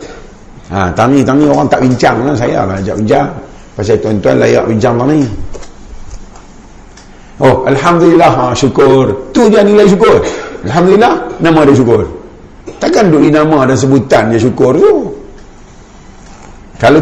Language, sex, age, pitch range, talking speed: Malay, male, 50-69, 135-185 Hz, 140 wpm